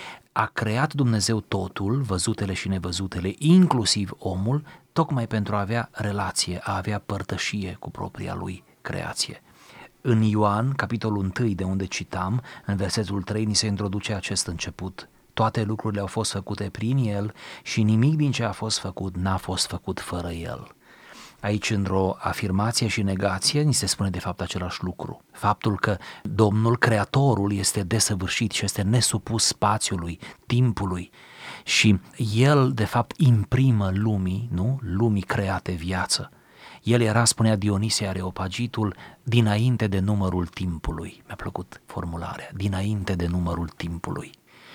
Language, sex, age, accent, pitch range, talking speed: Romanian, male, 30-49, native, 95-115 Hz, 140 wpm